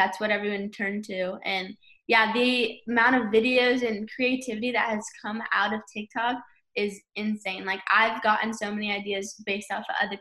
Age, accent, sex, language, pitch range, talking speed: 10-29, American, female, English, 200-230 Hz, 180 wpm